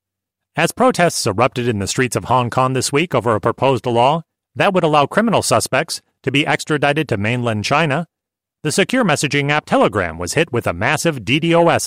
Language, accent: English, American